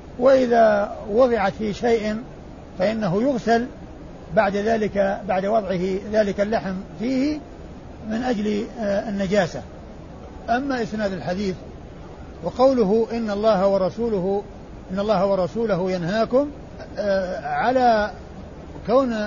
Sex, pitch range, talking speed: male, 185-220 Hz, 90 wpm